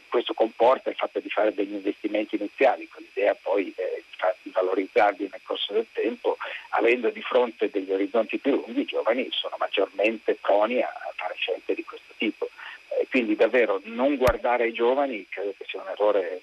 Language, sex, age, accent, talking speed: Italian, male, 50-69, native, 170 wpm